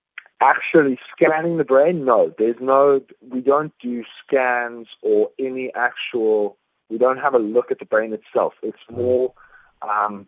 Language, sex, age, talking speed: English, male, 30-49, 150 wpm